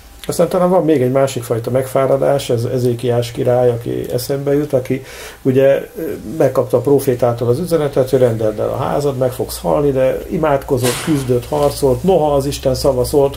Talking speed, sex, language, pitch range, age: 155 wpm, male, English, 115-140 Hz, 50-69